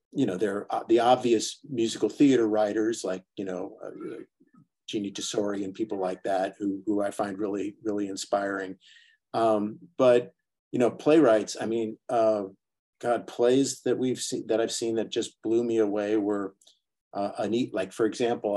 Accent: American